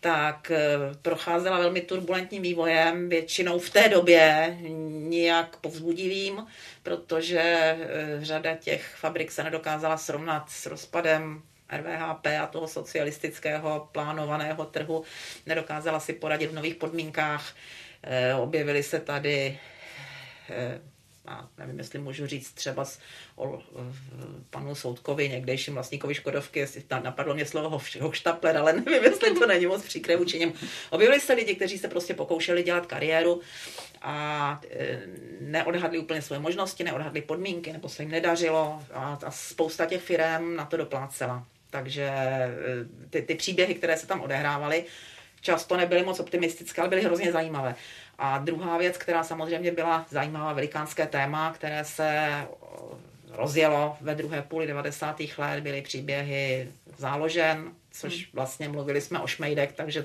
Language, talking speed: Czech, 135 wpm